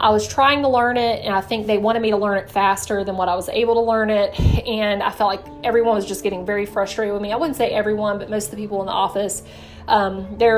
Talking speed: 285 wpm